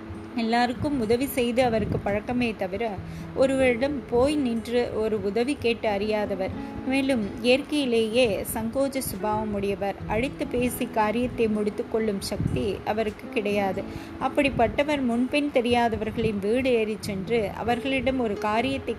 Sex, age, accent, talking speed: female, 20-39, native, 110 wpm